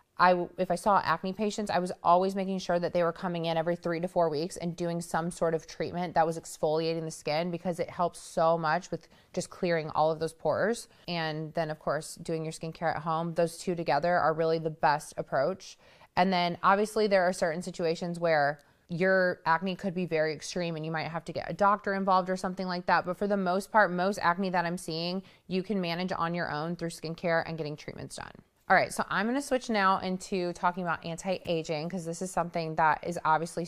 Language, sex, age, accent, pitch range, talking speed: English, female, 20-39, American, 165-200 Hz, 230 wpm